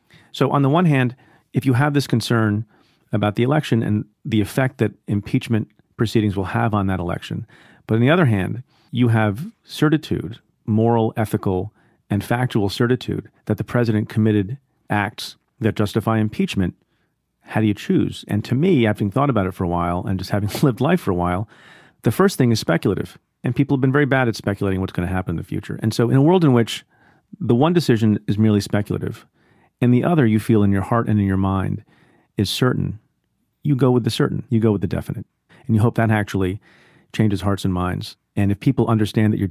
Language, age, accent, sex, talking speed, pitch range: English, 40-59, American, male, 210 wpm, 100-130 Hz